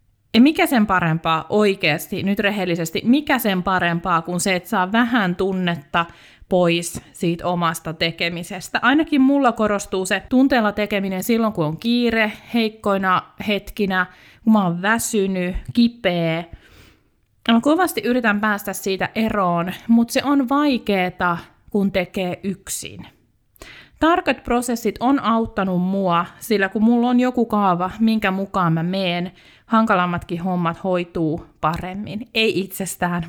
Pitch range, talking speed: 180-230 Hz, 130 wpm